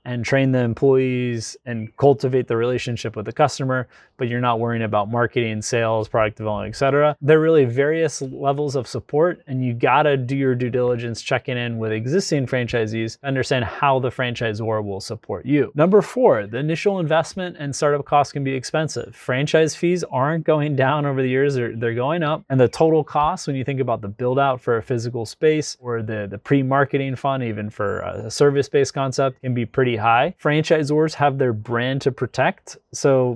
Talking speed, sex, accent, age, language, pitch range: 190 wpm, male, American, 20-39, English, 120-145 Hz